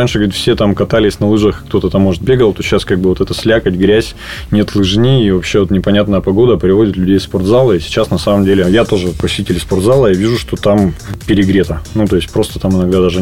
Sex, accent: male, native